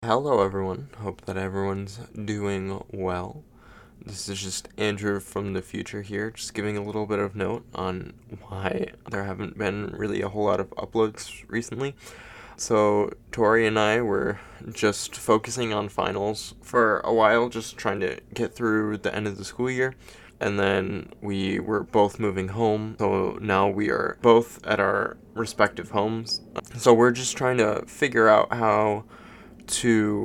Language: English